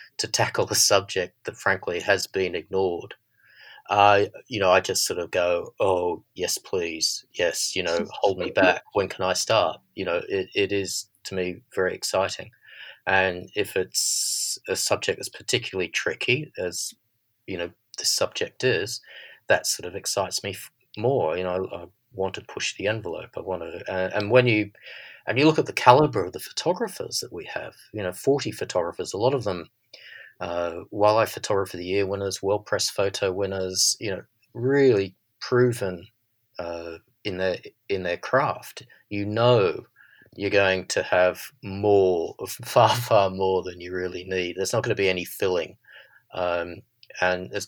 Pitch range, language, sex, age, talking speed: 95-125 Hz, English, male, 30-49, 175 wpm